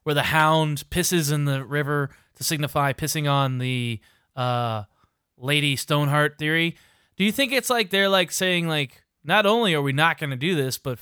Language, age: English, 20-39